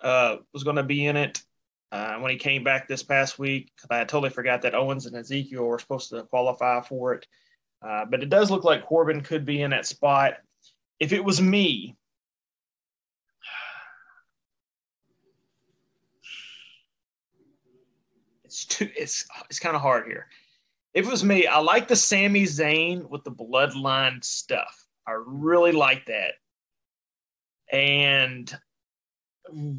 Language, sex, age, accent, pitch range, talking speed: English, male, 30-49, American, 125-155 Hz, 140 wpm